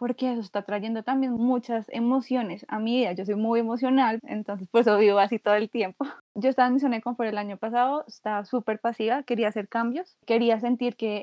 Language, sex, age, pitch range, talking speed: Spanish, female, 20-39, 215-250 Hz, 210 wpm